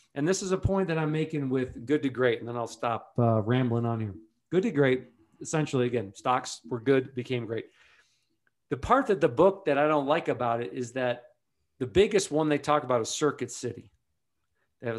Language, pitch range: English, 125-170 Hz